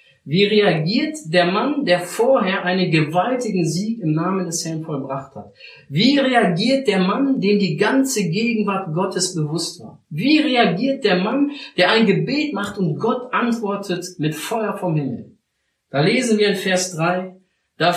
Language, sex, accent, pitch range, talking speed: German, male, German, 175-230 Hz, 160 wpm